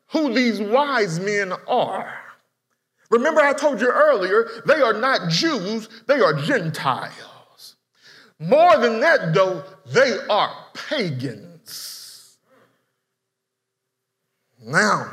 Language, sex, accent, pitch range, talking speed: English, male, American, 155-230 Hz, 100 wpm